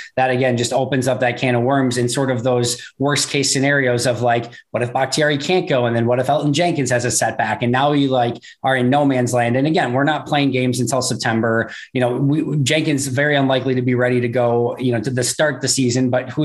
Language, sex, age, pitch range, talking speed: English, male, 20-39, 120-140 Hz, 255 wpm